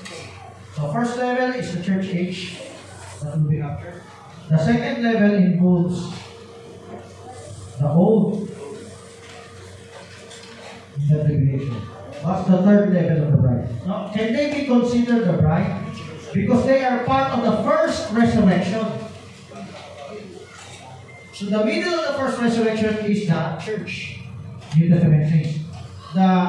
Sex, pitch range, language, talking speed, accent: male, 150-215 Hz, Filipino, 120 wpm, native